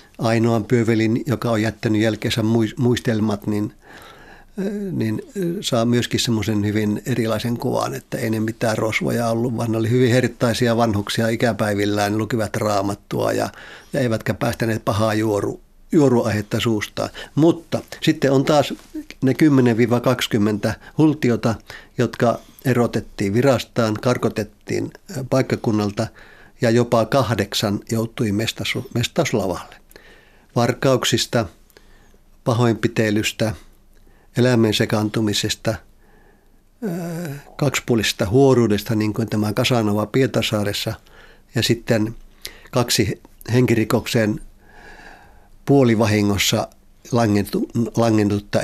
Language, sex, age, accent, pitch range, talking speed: Finnish, male, 50-69, native, 110-125 Hz, 90 wpm